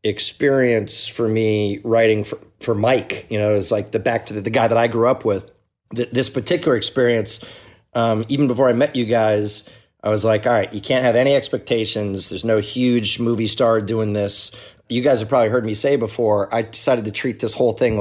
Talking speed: 215 wpm